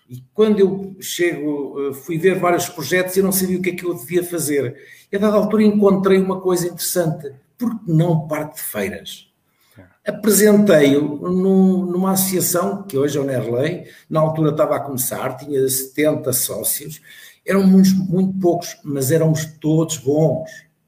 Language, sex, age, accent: Portuguese, male, 50-69, Portuguese